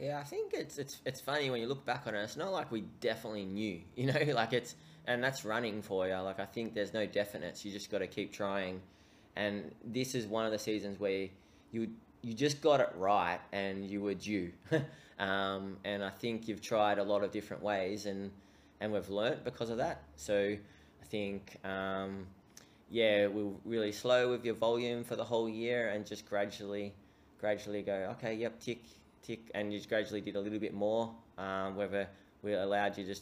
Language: English